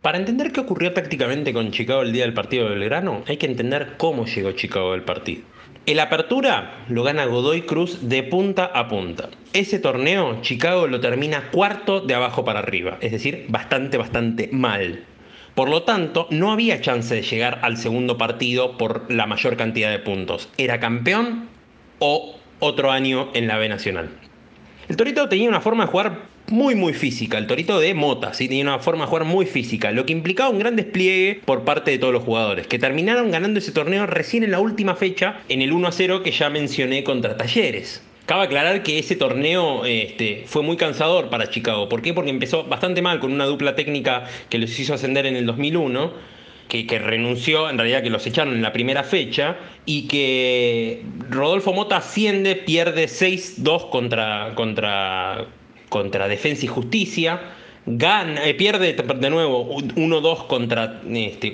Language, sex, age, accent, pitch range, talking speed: Spanish, male, 30-49, Argentinian, 120-185 Hz, 180 wpm